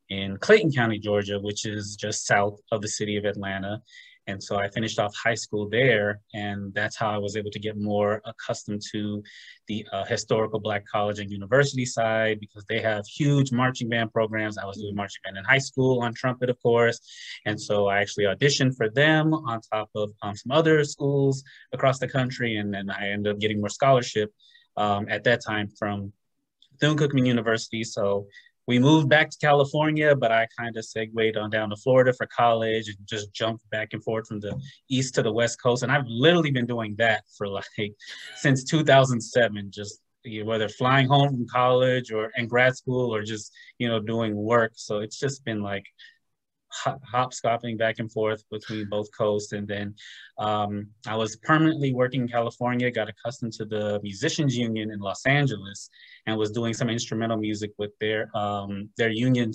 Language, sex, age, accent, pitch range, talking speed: English, male, 20-39, American, 105-125 Hz, 190 wpm